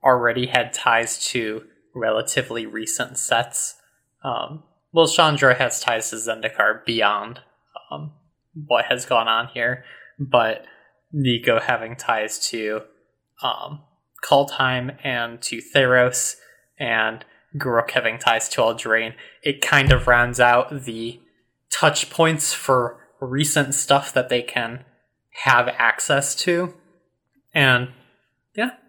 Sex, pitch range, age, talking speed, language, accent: male, 120-150 Hz, 20-39, 120 wpm, English, American